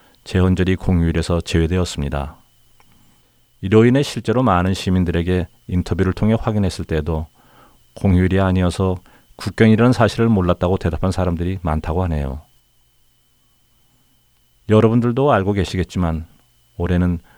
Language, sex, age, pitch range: Korean, male, 40-59, 85-105 Hz